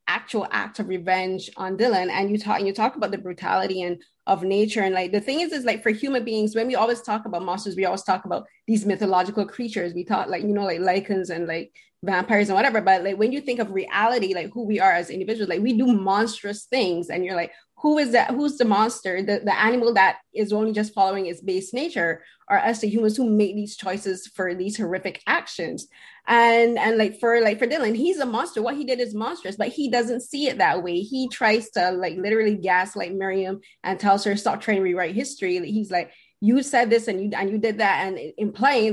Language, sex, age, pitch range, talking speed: English, female, 20-39, 190-235 Hz, 235 wpm